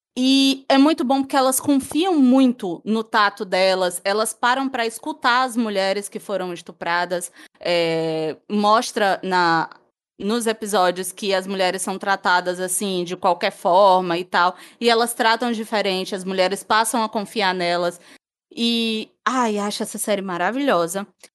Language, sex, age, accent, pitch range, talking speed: Portuguese, female, 20-39, Brazilian, 195-260 Hz, 145 wpm